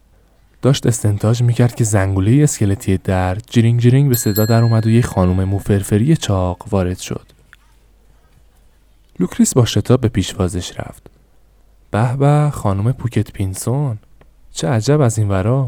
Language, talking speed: Persian, 135 wpm